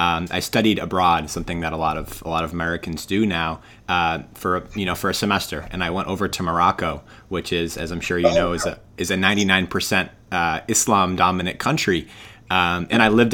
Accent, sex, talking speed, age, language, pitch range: American, male, 205 wpm, 30-49, English, 90-110 Hz